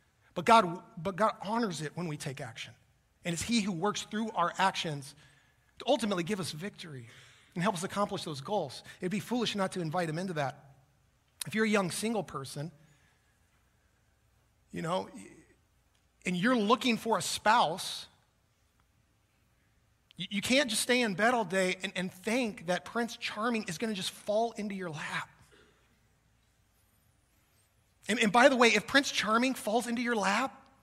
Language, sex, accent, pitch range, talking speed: English, male, American, 140-230 Hz, 170 wpm